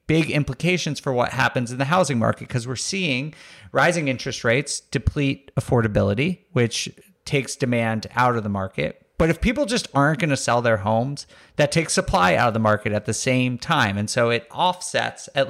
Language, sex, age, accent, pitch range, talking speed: English, male, 30-49, American, 120-165 Hz, 195 wpm